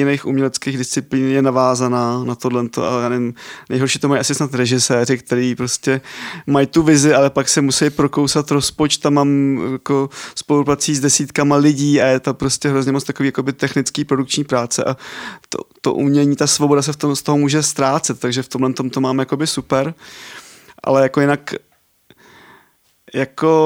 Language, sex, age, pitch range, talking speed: Czech, male, 20-39, 135-150 Hz, 165 wpm